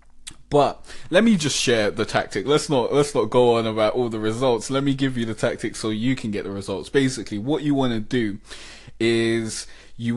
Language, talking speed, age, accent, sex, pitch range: English, 220 wpm, 20-39, British, male, 110-125 Hz